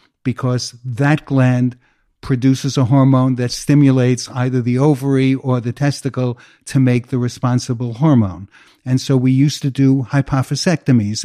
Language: English